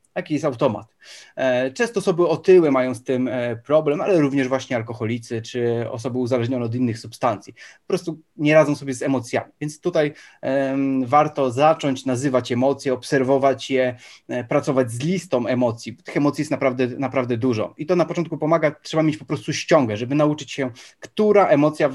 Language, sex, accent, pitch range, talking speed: Polish, male, native, 130-155 Hz, 165 wpm